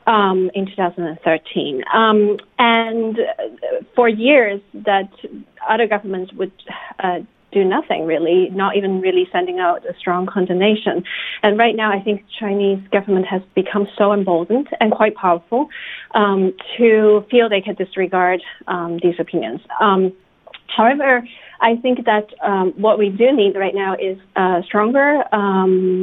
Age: 30-49